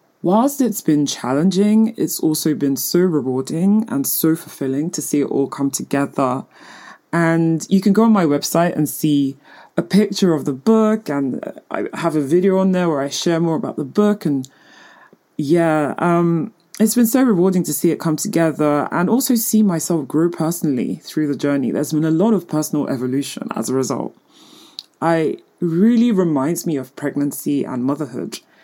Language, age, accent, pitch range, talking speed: English, 20-39, British, 150-200 Hz, 180 wpm